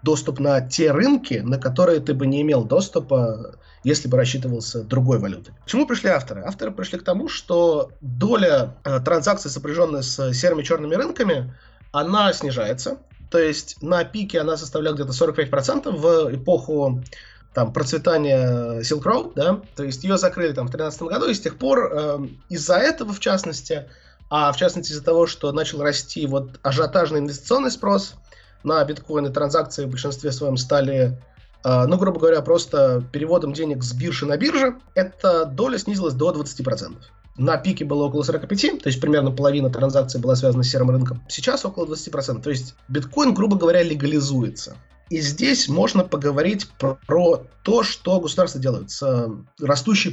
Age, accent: 20-39, native